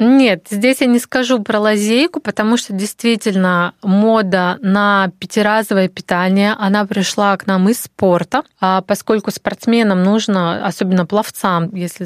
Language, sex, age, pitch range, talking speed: Russian, female, 20-39, 185-220 Hz, 135 wpm